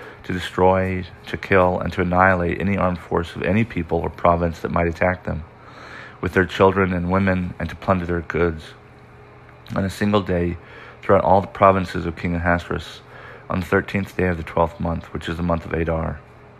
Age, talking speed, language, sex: 40-59, 195 wpm, English, male